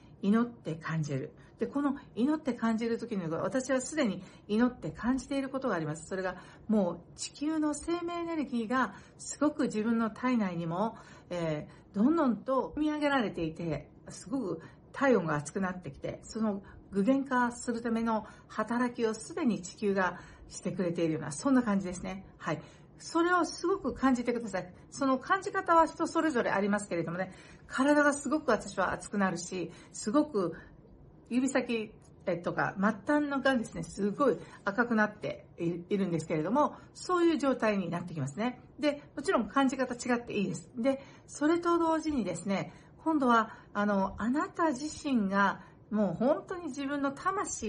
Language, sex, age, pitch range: Japanese, female, 60-79, 180-275 Hz